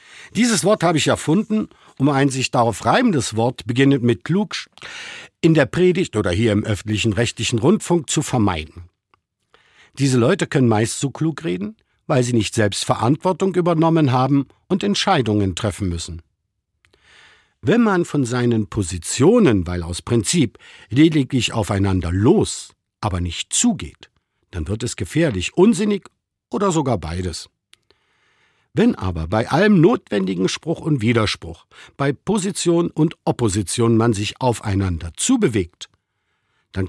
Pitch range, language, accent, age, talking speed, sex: 105-160 Hz, German, German, 50-69, 135 wpm, male